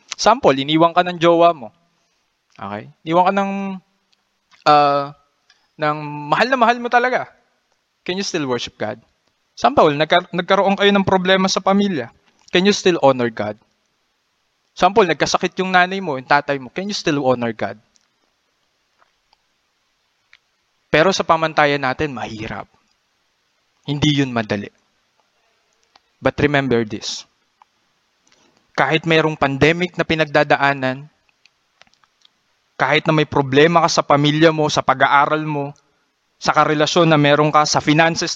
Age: 20-39